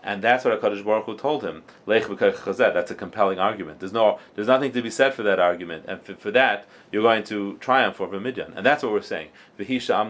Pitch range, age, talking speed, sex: 95-120 Hz, 30-49, 250 wpm, male